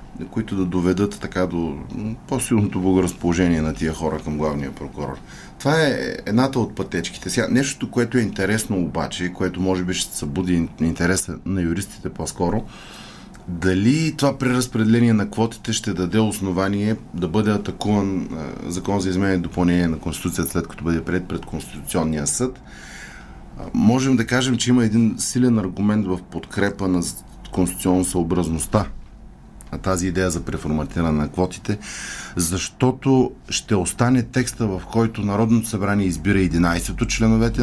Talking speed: 145 wpm